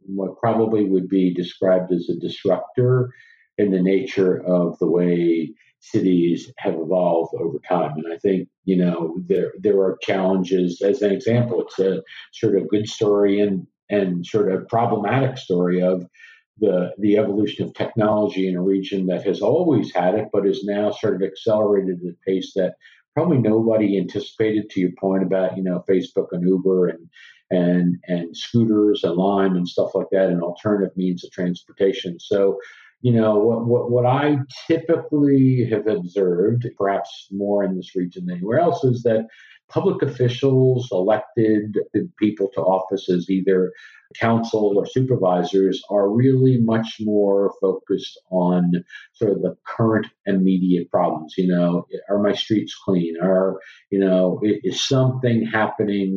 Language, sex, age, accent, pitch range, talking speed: English, male, 50-69, American, 90-115 Hz, 160 wpm